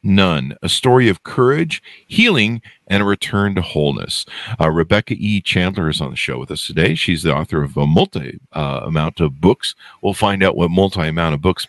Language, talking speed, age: English, 205 wpm, 50-69